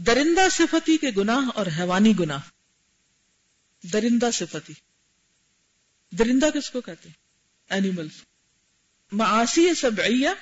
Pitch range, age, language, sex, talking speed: 195-275 Hz, 50-69, Urdu, female, 100 wpm